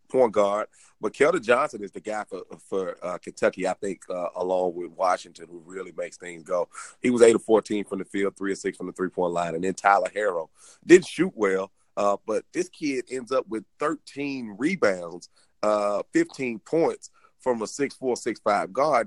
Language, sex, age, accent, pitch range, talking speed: English, male, 30-49, American, 100-130 Hz, 205 wpm